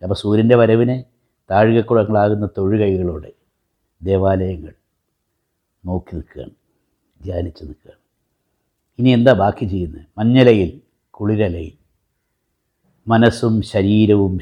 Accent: native